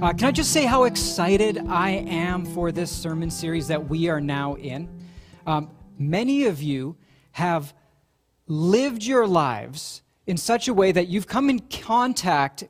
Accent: American